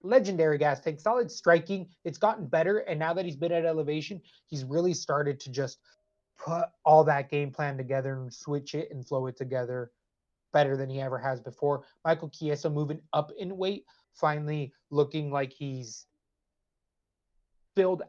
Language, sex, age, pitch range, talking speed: English, male, 20-39, 140-170 Hz, 165 wpm